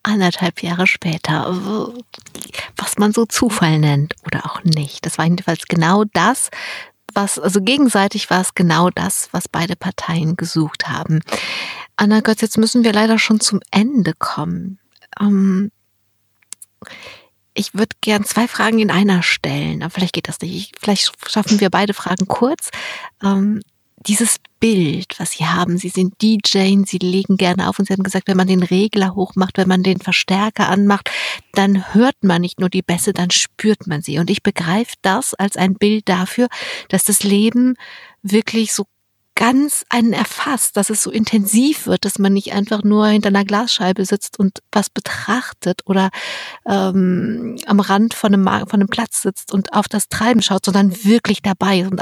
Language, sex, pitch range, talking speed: German, female, 185-220 Hz, 170 wpm